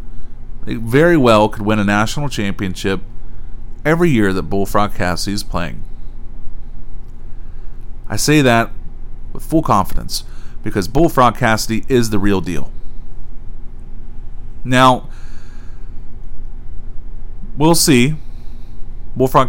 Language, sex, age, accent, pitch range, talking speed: English, male, 30-49, American, 100-130 Hz, 95 wpm